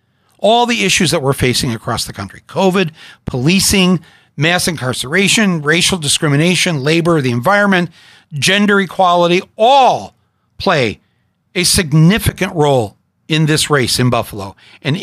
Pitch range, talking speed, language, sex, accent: 110-150 Hz, 125 wpm, English, male, American